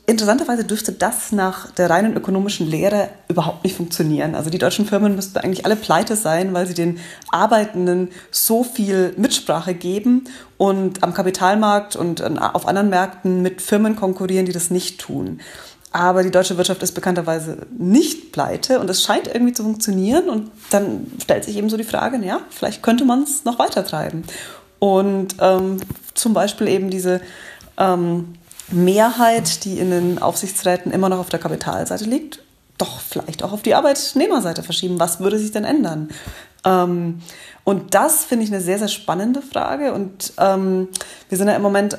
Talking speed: 165 wpm